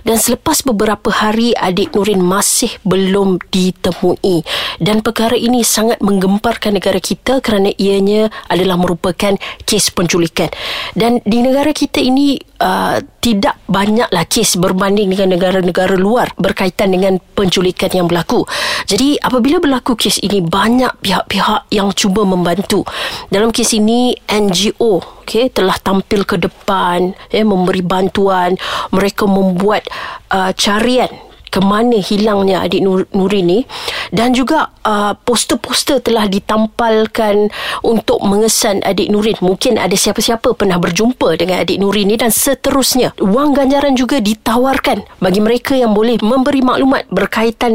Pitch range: 190-240 Hz